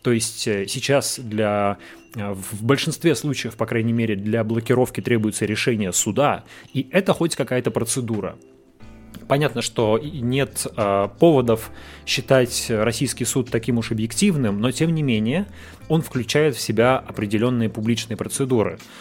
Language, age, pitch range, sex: Russian, 30-49, 110-135 Hz, male